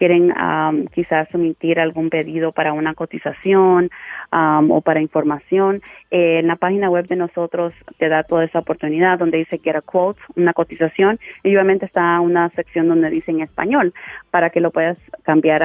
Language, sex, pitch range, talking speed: English, female, 155-180 Hz, 175 wpm